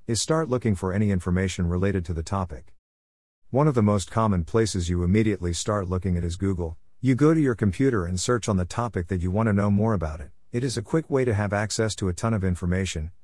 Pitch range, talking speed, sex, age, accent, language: 90-115 Hz, 245 wpm, male, 50-69, American, English